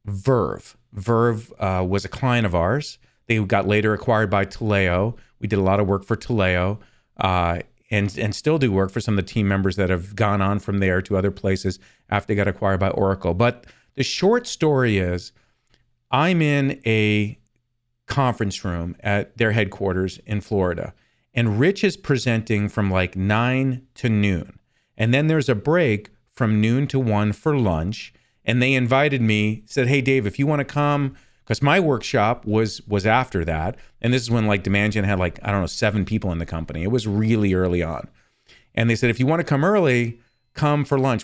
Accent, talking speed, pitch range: American, 200 wpm, 100-125 Hz